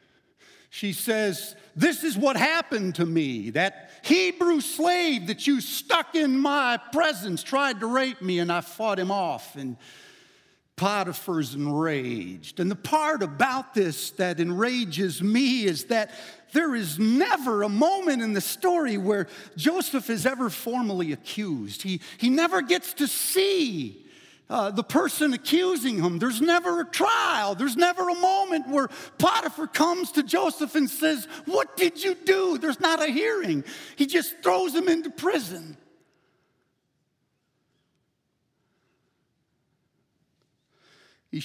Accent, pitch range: American, 200-325 Hz